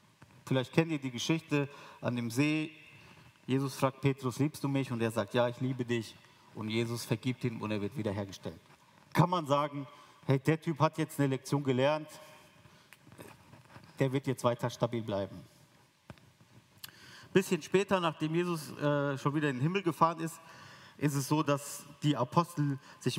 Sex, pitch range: male, 125-155 Hz